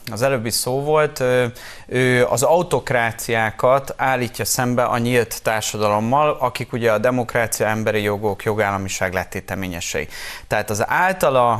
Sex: male